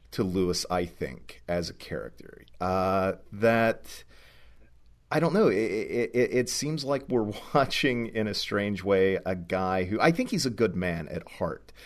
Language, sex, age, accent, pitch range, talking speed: English, male, 40-59, American, 90-120 Hz, 170 wpm